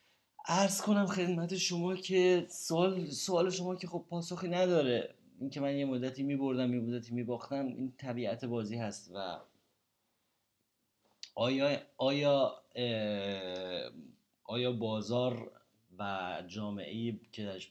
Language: Persian